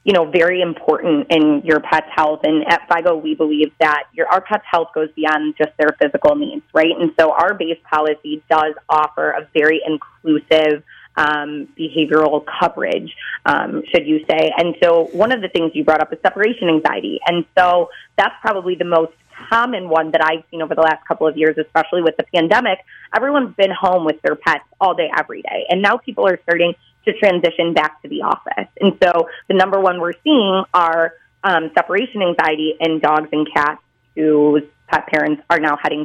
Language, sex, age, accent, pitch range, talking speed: English, female, 20-39, American, 155-190 Hz, 195 wpm